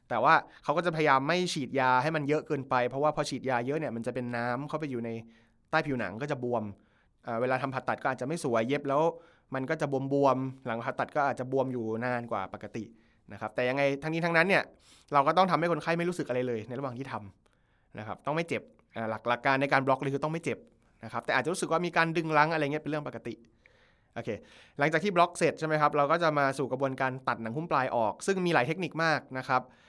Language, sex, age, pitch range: Thai, male, 20-39, 120-150 Hz